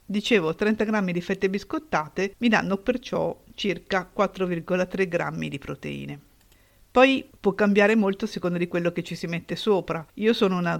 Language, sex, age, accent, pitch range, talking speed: Italian, female, 50-69, native, 170-195 Hz, 165 wpm